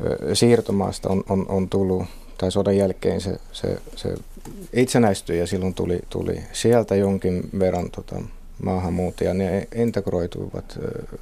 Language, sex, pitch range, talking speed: Finnish, male, 95-110 Hz, 125 wpm